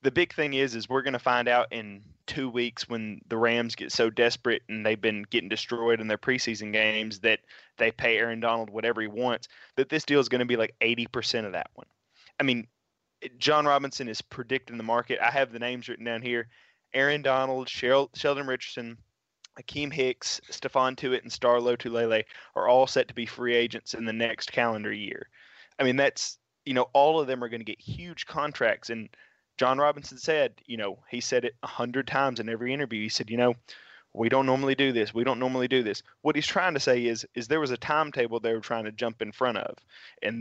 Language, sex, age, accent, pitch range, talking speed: English, male, 20-39, American, 115-130 Hz, 225 wpm